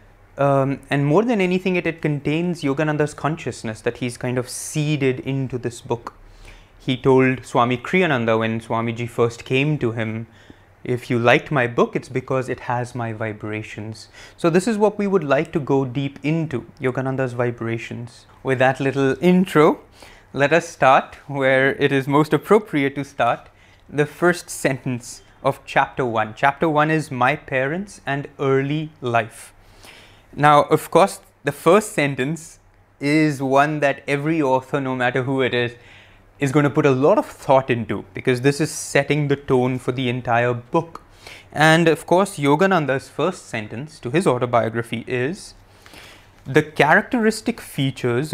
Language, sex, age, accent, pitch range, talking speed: English, male, 30-49, Indian, 120-150 Hz, 160 wpm